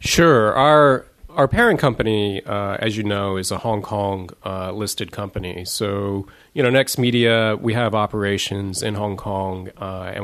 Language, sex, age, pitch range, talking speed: English, male, 30-49, 95-120 Hz, 165 wpm